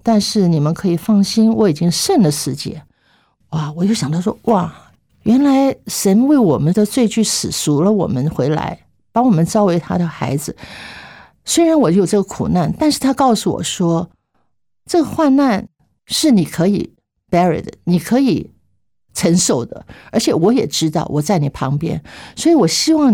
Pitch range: 170-225 Hz